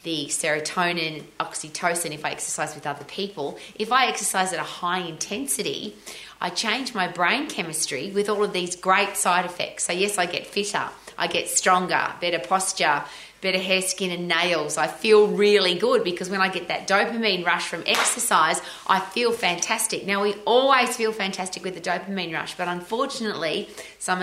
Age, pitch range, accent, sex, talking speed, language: 30-49, 170-205 Hz, Australian, female, 175 wpm, English